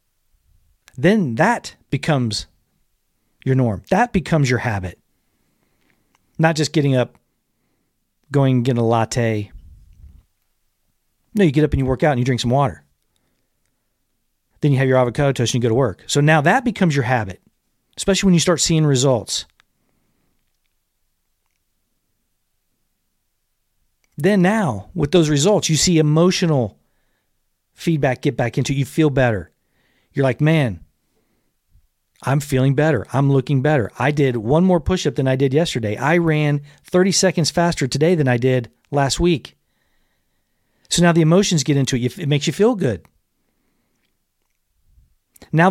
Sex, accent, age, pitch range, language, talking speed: male, American, 40-59, 105-155 Hz, English, 145 wpm